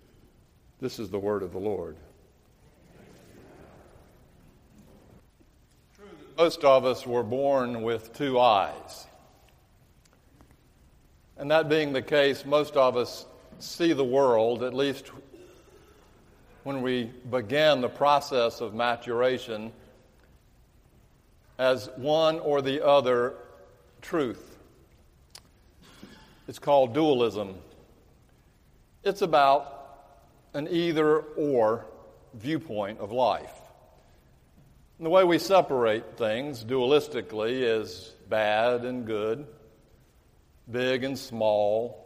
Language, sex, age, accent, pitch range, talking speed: English, male, 60-79, American, 115-145 Hz, 95 wpm